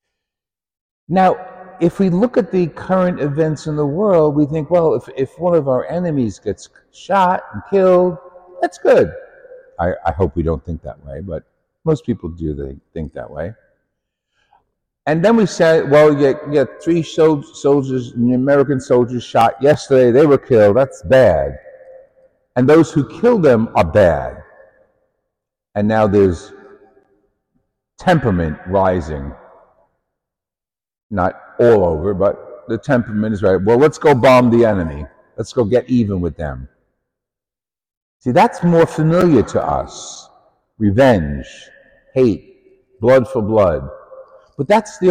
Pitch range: 110-180 Hz